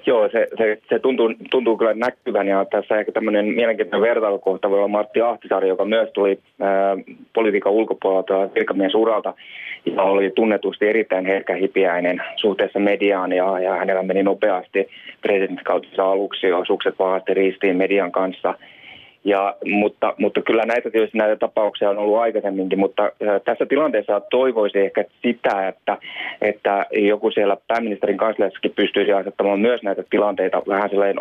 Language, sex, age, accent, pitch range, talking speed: Finnish, male, 20-39, native, 95-105 Hz, 145 wpm